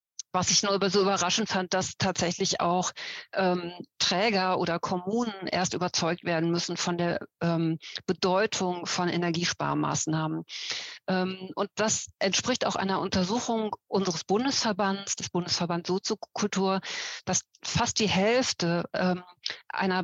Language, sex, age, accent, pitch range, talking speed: German, female, 50-69, German, 180-200 Hz, 125 wpm